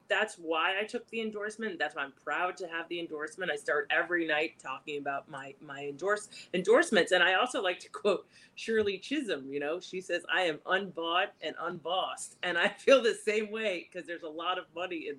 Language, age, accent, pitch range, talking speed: English, 40-59, American, 160-225 Hz, 215 wpm